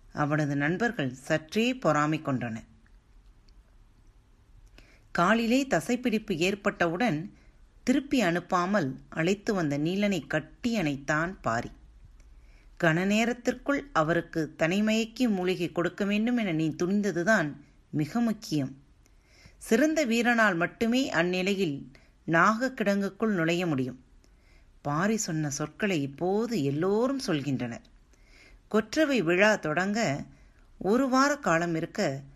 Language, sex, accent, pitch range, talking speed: Tamil, female, native, 145-220 Hz, 85 wpm